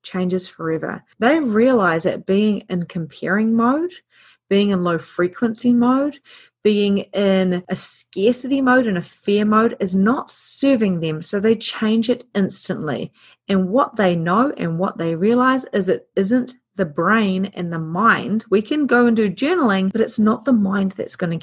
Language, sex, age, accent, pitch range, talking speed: English, female, 30-49, Australian, 175-230 Hz, 175 wpm